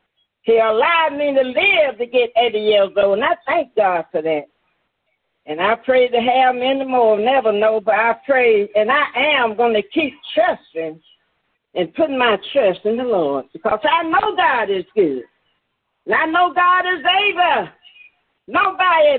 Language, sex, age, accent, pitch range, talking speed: English, female, 40-59, American, 225-325 Hz, 170 wpm